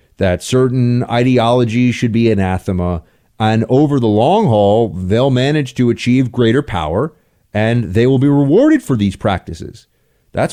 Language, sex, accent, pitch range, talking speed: English, male, American, 110-155 Hz, 150 wpm